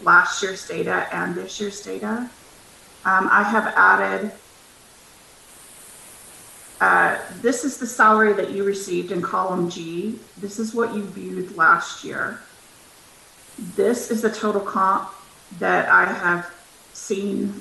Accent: American